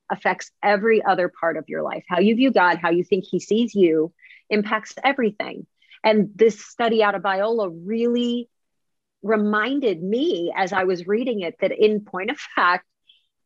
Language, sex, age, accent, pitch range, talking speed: English, female, 30-49, American, 195-235 Hz, 170 wpm